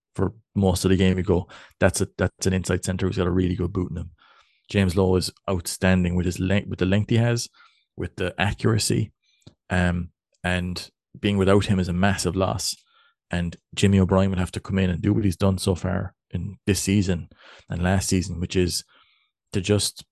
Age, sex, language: 30-49, male, English